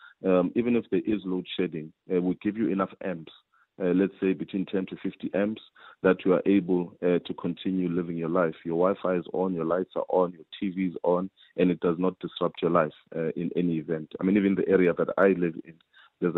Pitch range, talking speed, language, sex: 85-95 Hz, 235 wpm, English, male